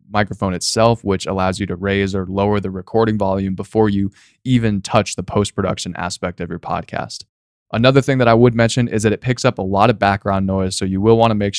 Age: 20-39